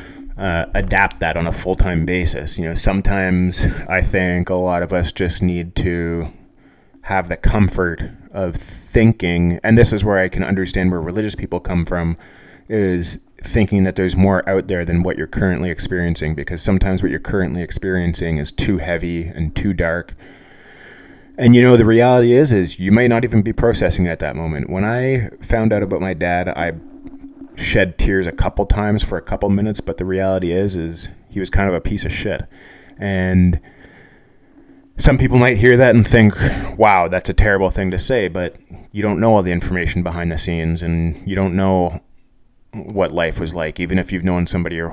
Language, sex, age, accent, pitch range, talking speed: English, male, 20-39, American, 85-100 Hz, 195 wpm